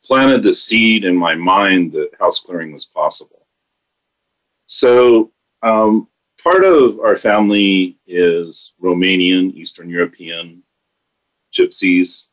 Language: English